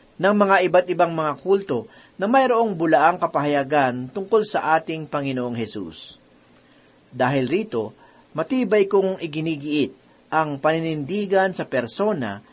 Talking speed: 115 wpm